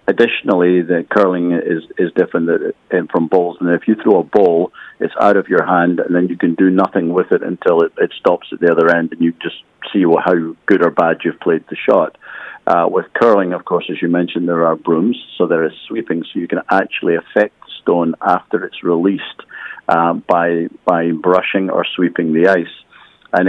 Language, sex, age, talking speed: English, male, 50-69, 205 wpm